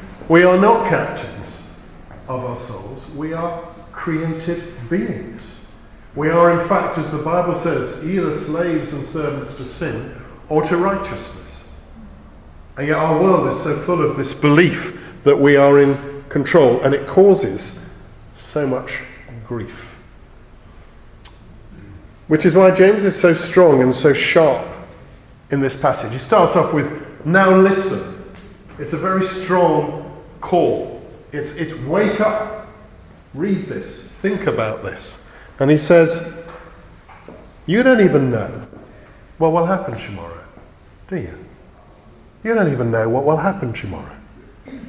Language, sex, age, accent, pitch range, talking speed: English, male, 50-69, British, 115-175 Hz, 140 wpm